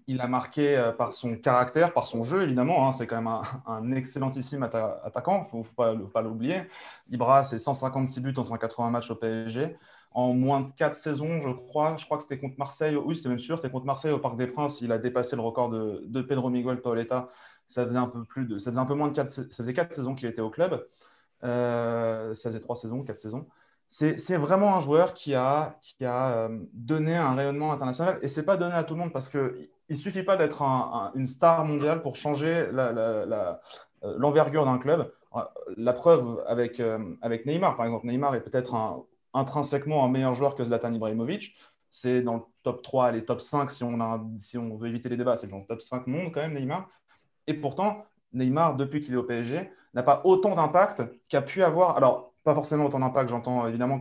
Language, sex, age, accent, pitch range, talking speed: French, male, 30-49, French, 120-150 Hz, 220 wpm